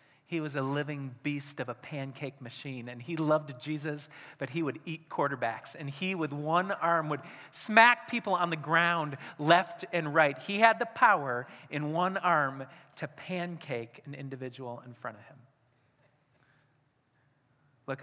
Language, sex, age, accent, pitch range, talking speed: English, male, 40-59, American, 135-210 Hz, 160 wpm